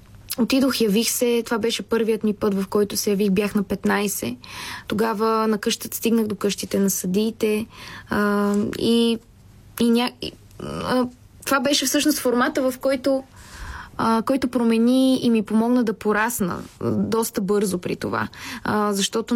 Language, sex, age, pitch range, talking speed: Bulgarian, female, 20-39, 195-230 Hz, 135 wpm